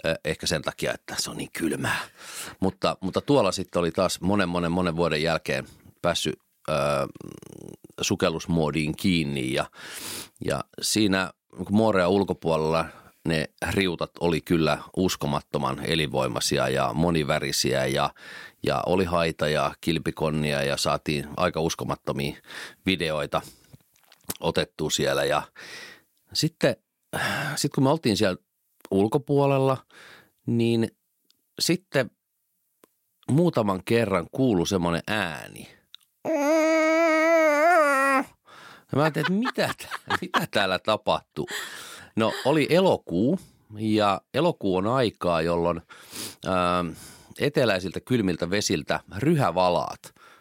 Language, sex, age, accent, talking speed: Finnish, male, 40-59, native, 100 wpm